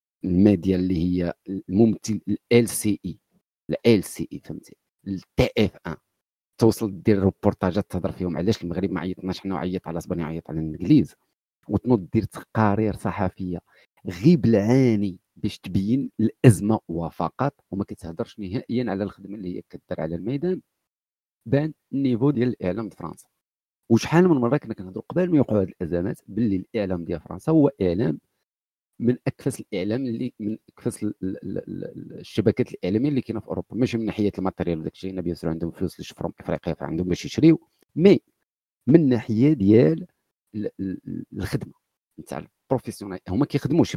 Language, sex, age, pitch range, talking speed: Arabic, male, 50-69, 90-120 Hz, 145 wpm